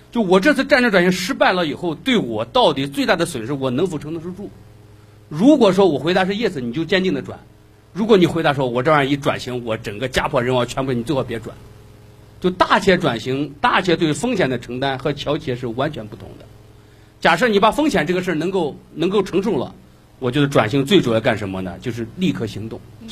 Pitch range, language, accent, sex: 110-175 Hz, Chinese, native, male